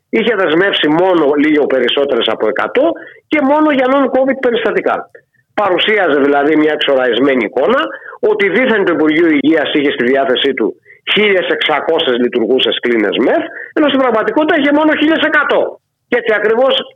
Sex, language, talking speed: male, Greek, 140 wpm